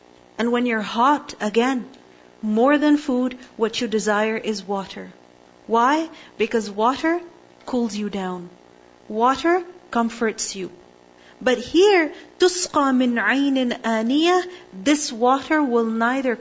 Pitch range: 200-275 Hz